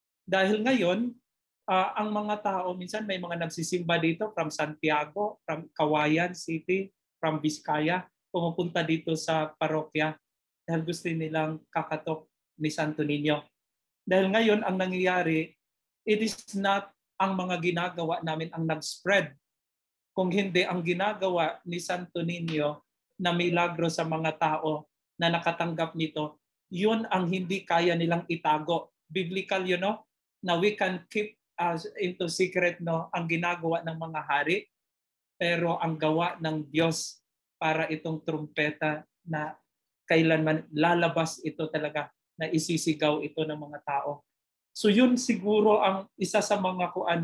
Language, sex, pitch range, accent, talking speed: English, male, 160-185 Hz, Filipino, 135 wpm